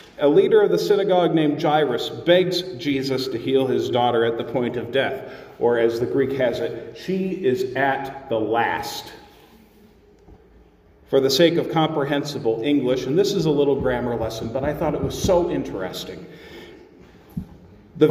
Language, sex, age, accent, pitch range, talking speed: English, male, 40-59, American, 150-210 Hz, 165 wpm